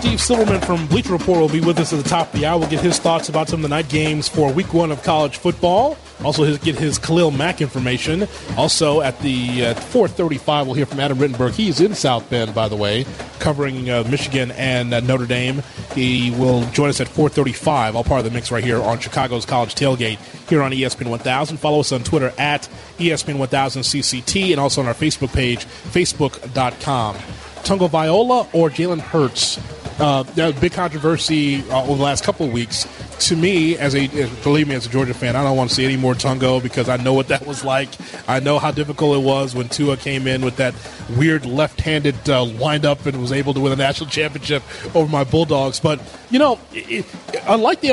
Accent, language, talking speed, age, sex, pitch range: American, English, 215 wpm, 30-49, male, 130-160 Hz